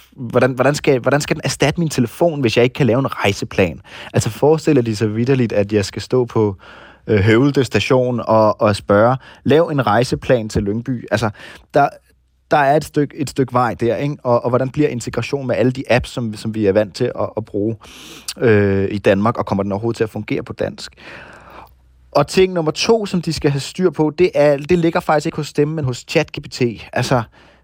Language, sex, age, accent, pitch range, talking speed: Danish, male, 30-49, native, 100-135 Hz, 215 wpm